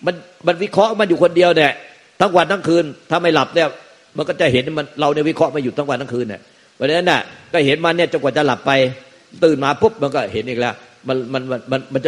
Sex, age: male, 60-79